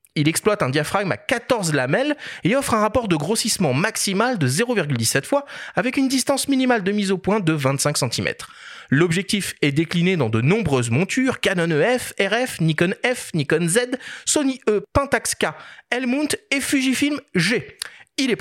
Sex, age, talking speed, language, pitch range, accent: male, 30-49, 170 wpm, French, 140-225 Hz, French